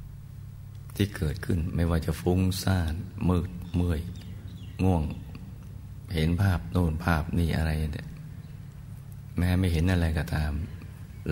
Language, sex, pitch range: Thai, male, 85-100 Hz